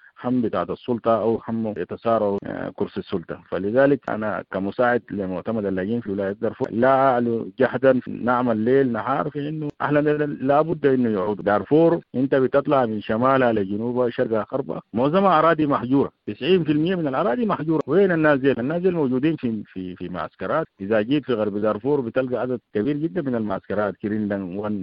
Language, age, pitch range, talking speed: English, 50-69, 110-160 Hz, 150 wpm